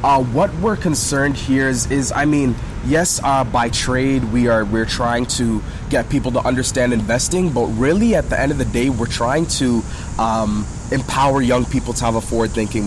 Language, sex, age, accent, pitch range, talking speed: English, male, 20-39, American, 115-135 Hz, 190 wpm